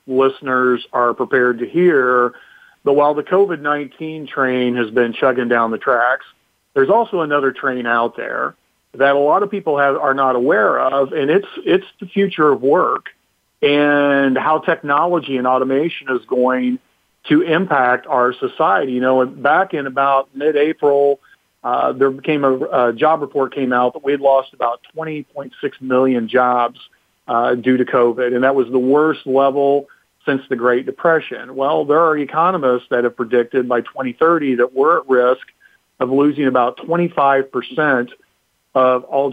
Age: 40-59